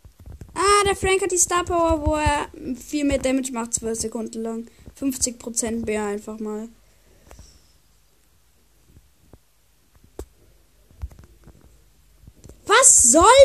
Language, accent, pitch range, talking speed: German, German, 225-360 Hz, 85 wpm